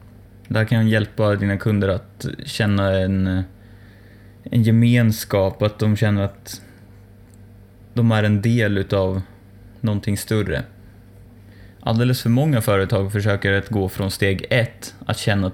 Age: 20-39